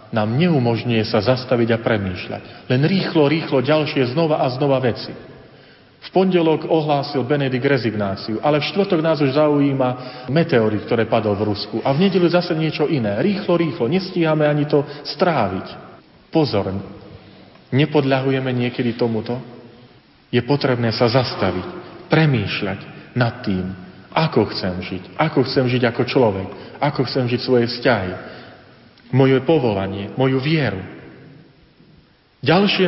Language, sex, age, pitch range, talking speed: Slovak, male, 40-59, 115-155 Hz, 130 wpm